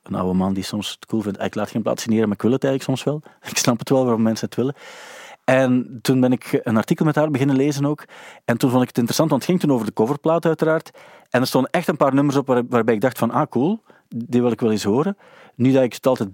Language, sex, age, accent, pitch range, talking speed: Dutch, male, 40-59, Dutch, 115-140 Hz, 290 wpm